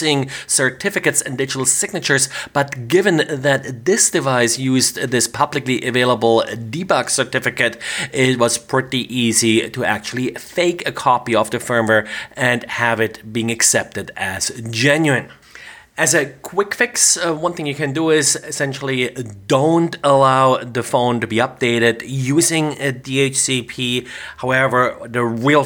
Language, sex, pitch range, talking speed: English, male, 115-140 Hz, 135 wpm